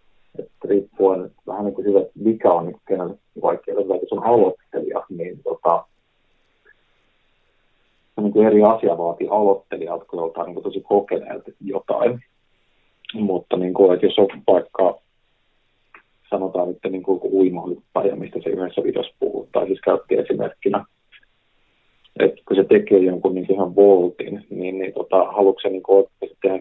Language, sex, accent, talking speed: Finnish, male, native, 145 wpm